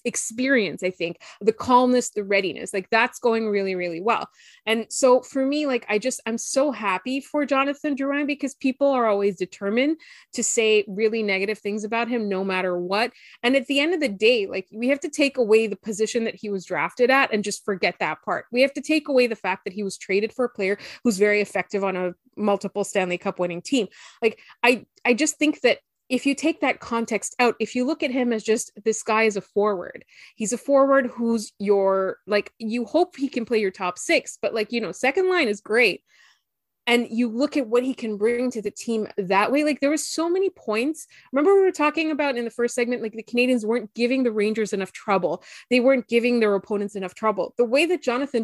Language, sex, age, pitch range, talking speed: English, female, 20-39, 210-275 Hz, 230 wpm